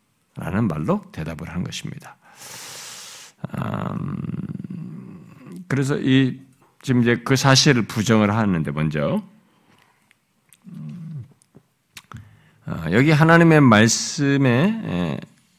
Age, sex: 50-69, male